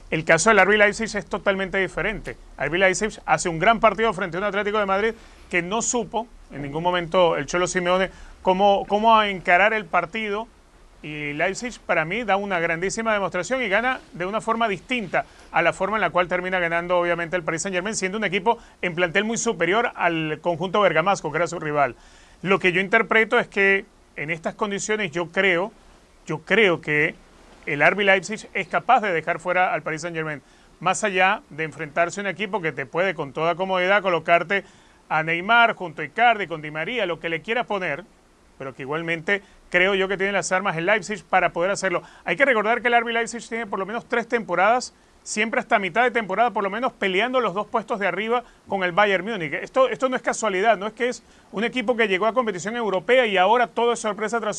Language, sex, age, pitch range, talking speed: Spanish, male, 30-49, 175-225 Hz, 215 wpm